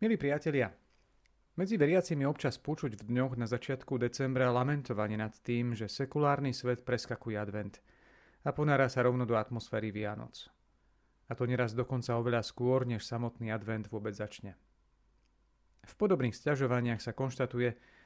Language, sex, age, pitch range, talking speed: Slovak, male, 40-59, 110-130 Hz, 140 wpm